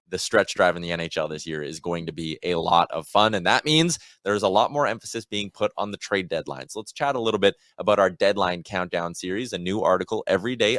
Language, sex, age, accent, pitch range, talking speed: English, male, 20-39, American, 95-130 Hz, 255 wpm